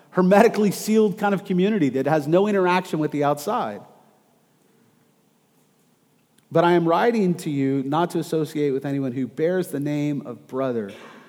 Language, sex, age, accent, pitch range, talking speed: English, male, 40-59, American, 135-180 Hz, 155 wpm